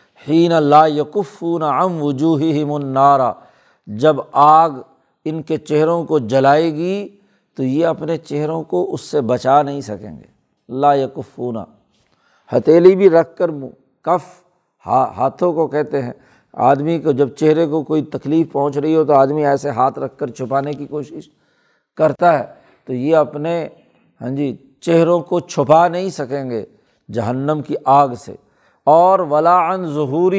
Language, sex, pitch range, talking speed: Urdu, male, 140-175 Hz, 150 wpm